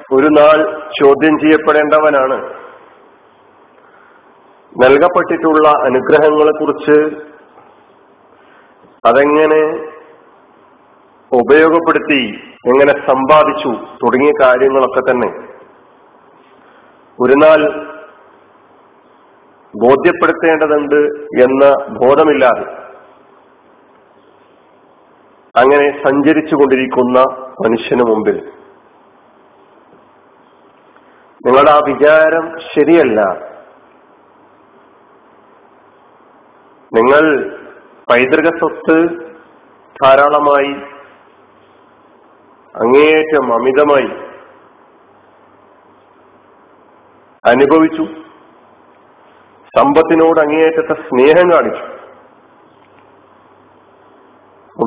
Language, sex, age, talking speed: Malayalam, male, 40-59, 40 wpm